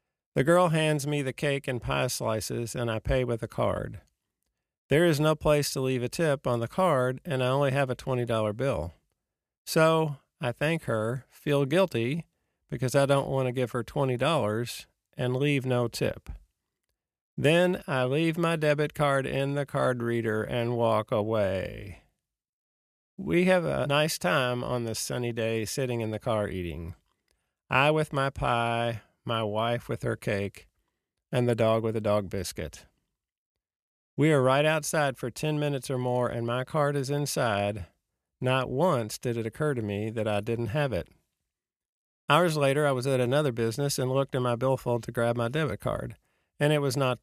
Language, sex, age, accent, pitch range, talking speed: English, male, 50-69, American, 115-145 Hz, 180 wpm